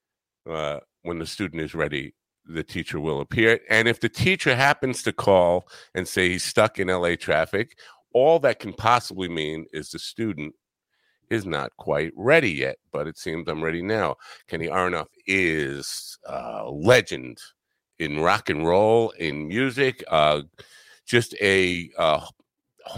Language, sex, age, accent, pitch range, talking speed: English, male, 50-69, American, 85-120 Hz, 150 wpm